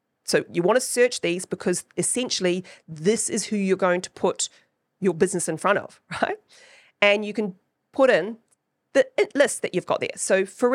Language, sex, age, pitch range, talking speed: English, female, 40-59, 175-220 Hz, 190 wpm